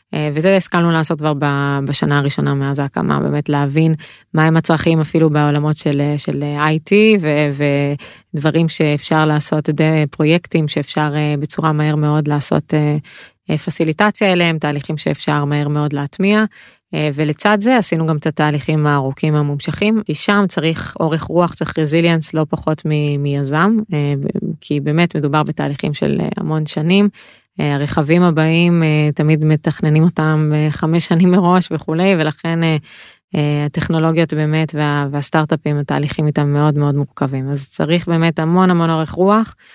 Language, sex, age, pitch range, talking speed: Hebrew, female, 20-39, 150-170 Hz, 145 wpm